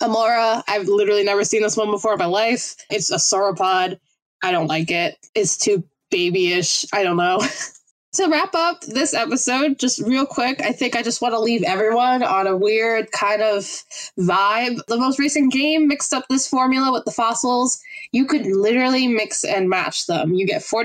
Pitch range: 195-270 Hz